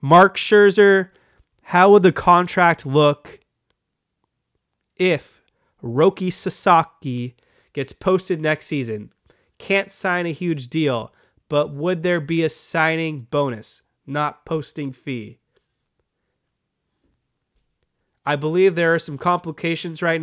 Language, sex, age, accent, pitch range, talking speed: English, male, 30-49, American, 140-165 Hz, 105 wpm